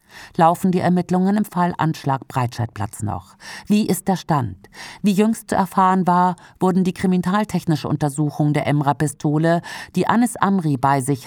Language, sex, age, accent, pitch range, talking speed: German, female, 50-69, German, 145-195 Hz, 150 wpm